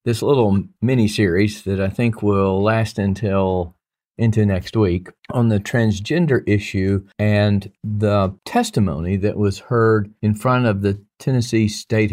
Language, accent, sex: English, American, male